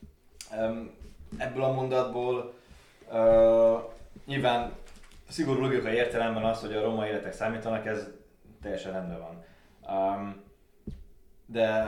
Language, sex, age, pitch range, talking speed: Hungarian, male, 20-39, 100-110 Hz, 90 wpm